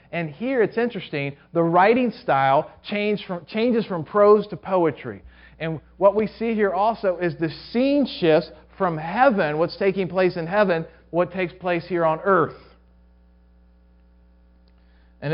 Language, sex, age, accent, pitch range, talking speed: English, male, 40-59, American, 140-185 Hz, 145 wpm